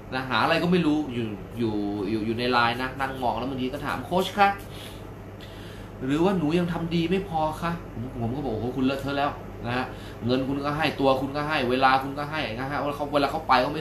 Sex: male